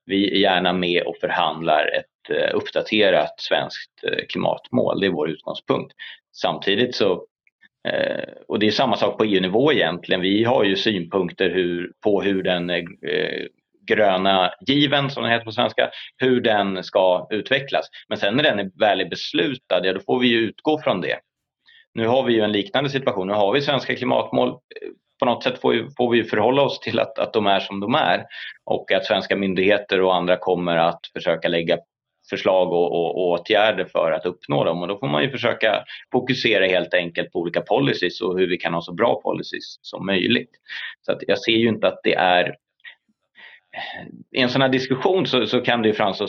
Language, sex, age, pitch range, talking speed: Swedish, male, 30-49, 90-130 Hz, 180 wpm